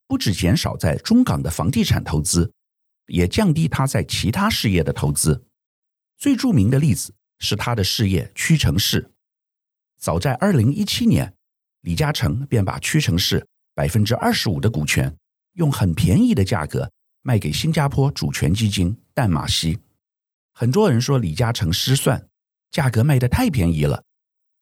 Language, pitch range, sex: Chinese, 100-140 Hz, male